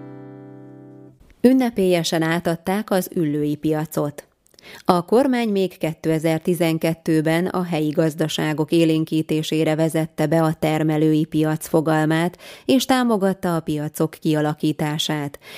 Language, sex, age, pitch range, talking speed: Hungarian, female, 20-39, 150-180 Hz, 90 wpm